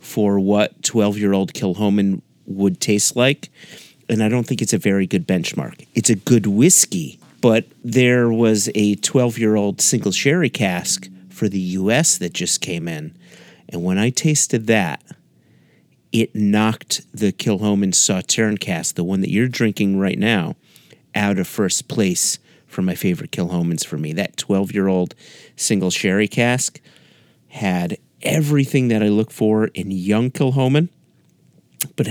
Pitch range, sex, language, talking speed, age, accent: 95-115 Hz, male, English, 145 wpm, 40-59, American